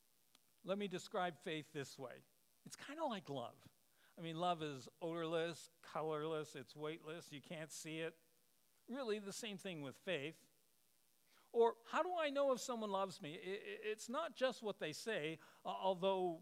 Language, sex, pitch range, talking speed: English, male, 155-210 Hz, 165 wpm